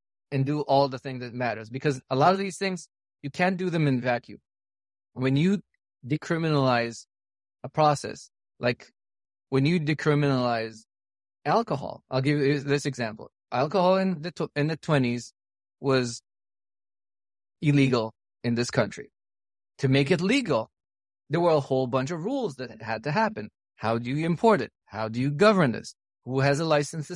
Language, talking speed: English, 160 wpm